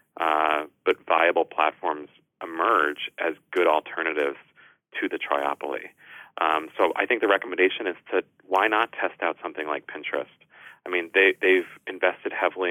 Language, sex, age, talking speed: English, male, 30-49, 150 wpm